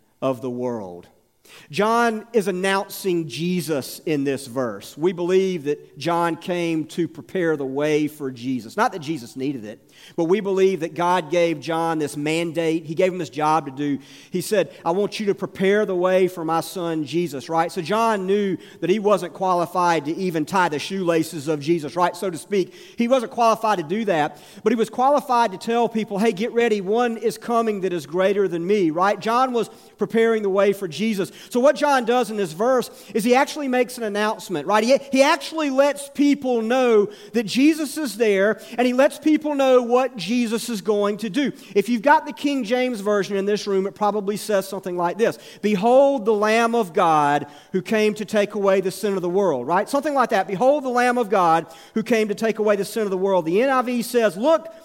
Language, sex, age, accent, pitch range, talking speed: English, male, 40-59, American, 165-230 Hz, 215 wpm